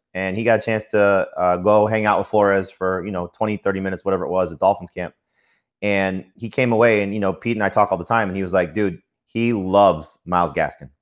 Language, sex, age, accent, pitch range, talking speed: English, male, 30-49, American, 85-105 Hz, 255 wpm